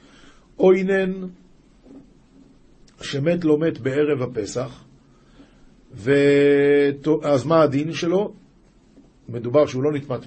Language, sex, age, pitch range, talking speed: Hebrew, male, 50-69, 135-175 Hz, 90 wpm